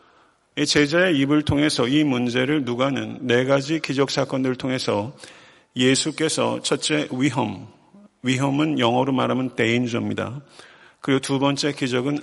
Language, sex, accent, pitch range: Korean, male, native, 125-150 Hz